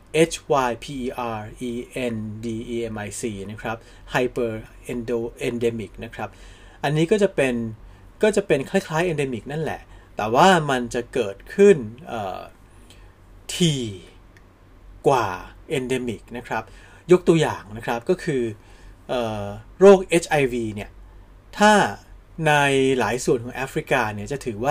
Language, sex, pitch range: Thai, male, 105-140 Hz